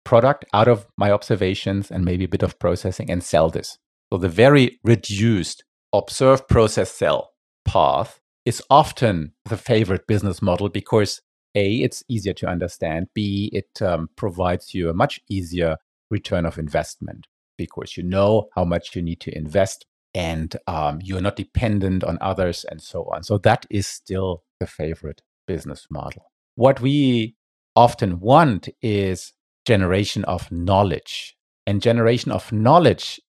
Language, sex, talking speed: English, male, 150 wpm